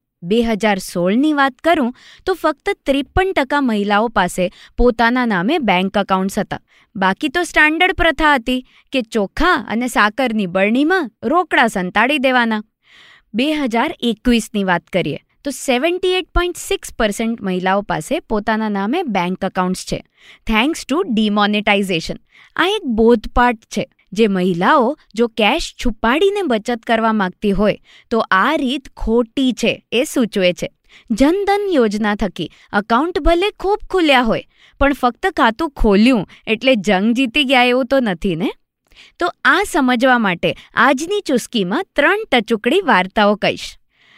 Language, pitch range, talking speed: Gujarati, 205-300 Hz, 120 wpm